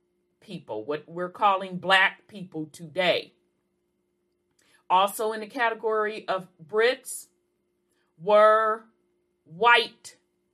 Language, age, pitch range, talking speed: English, 40-59, 175-225 Hz, 85 wpm